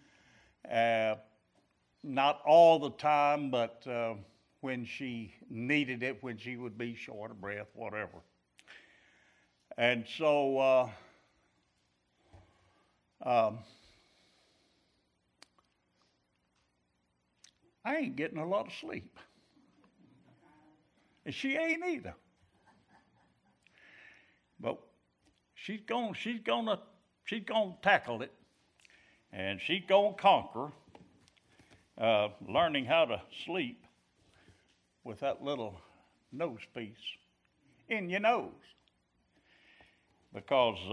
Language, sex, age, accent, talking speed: English, male, 60-79, American, 90 wpm